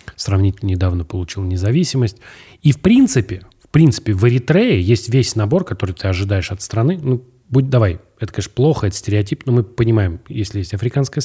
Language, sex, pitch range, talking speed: Russian, male, 95-125 Hz, 175 wpm